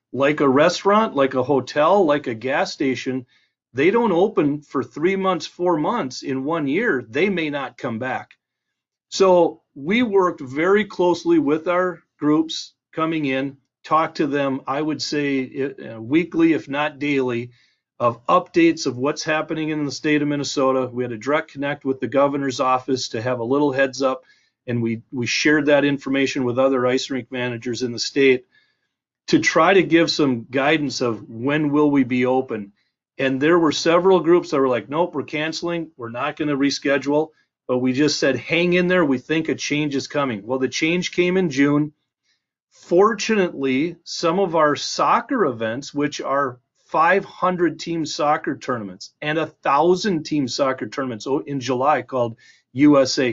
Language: English